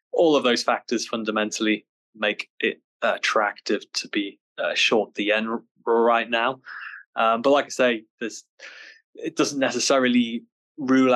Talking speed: 135 wpm